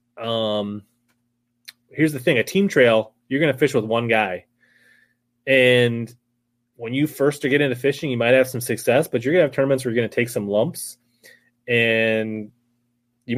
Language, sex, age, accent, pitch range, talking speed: English, male, 30-49, American, 115-130 Hz, 180 wpm